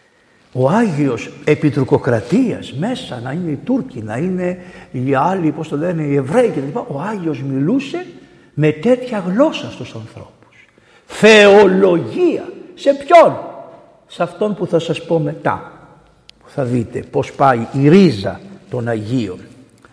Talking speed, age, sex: 135 wpm, 60-79, male